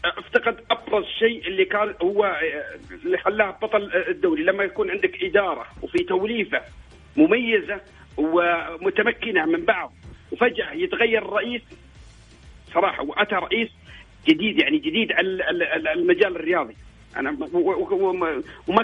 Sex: male